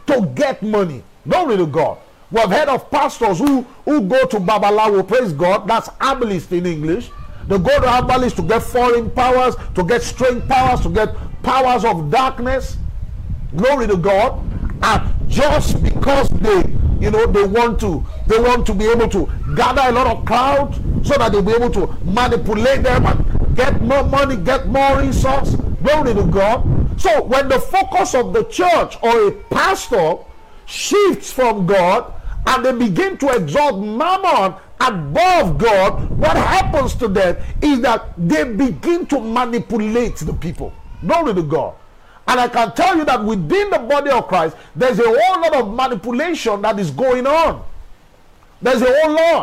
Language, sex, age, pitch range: English, male, 50-69, 220-285 Hz